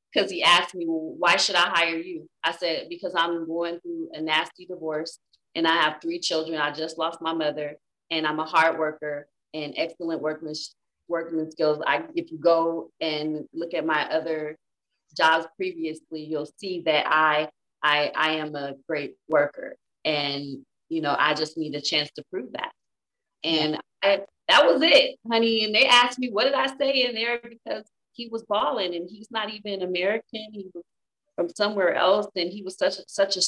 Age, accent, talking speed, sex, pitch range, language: 30-49, American, 190 wpm, female, 160-195 Hz, English